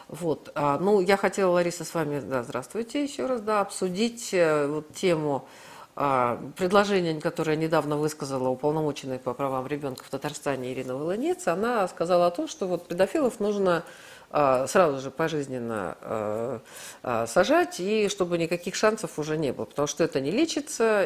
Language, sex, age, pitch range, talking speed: Russian, female, 40-59, 150-200 Hz, 155 wpm